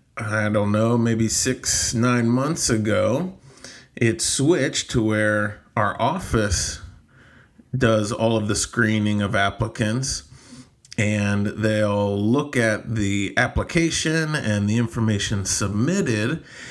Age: 30-49